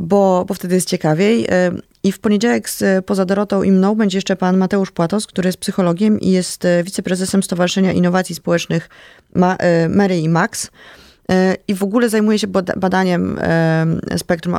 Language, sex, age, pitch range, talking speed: Polish, female, 20-39, 170-200 Hz, 150 wpm